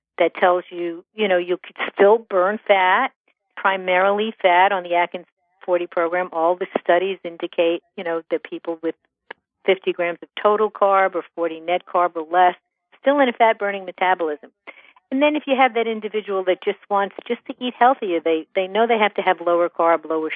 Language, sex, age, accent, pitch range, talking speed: English, female, 50-69, American, 160-205 Hz, 195 wpm